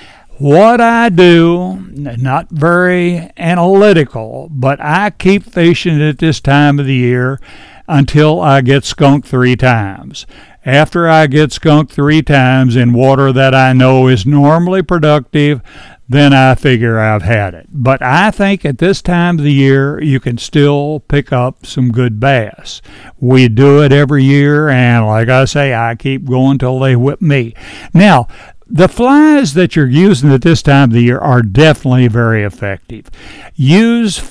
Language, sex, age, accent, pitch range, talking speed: English, male, 60-79, American, 125-165 Hz, 160 wpm